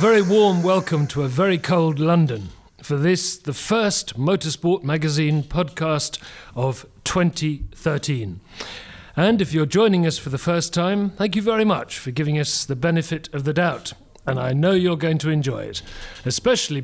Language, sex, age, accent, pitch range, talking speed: English, male, 40-59, British, 135-175 Hz, 170 wpm